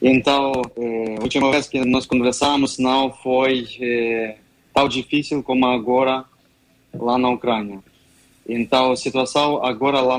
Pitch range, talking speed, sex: 120-135 Hz, 135 wpm, male